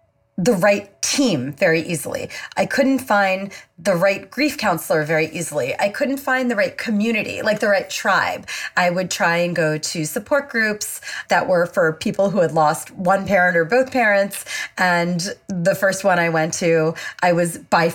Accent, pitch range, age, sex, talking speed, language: American, 165-245 Hz, 30-49, female, 180 wpm, English